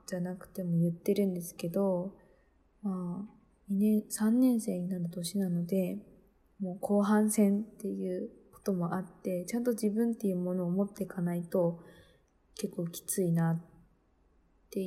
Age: 20-39